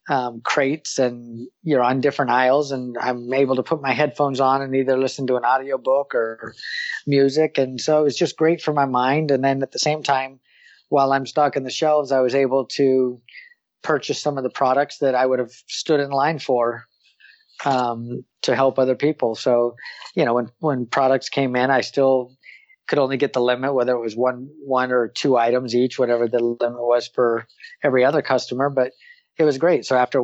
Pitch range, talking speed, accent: 120-140 Hz, 210 wpm, American